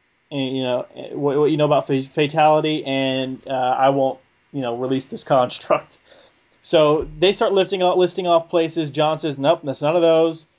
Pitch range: 135-160 Hz